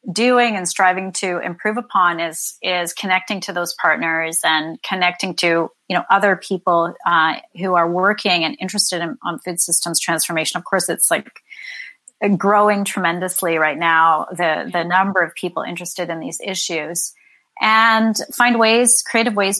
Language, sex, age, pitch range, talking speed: English, female, 30-49, 175-205 Hz, 160 wpm